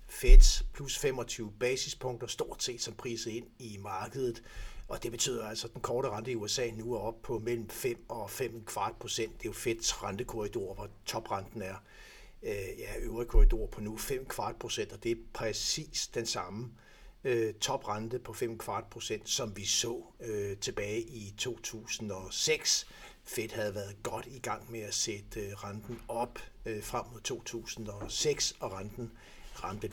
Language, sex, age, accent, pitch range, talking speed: Danish, male, 60-79, native, 110-125 Hz, 160 wpm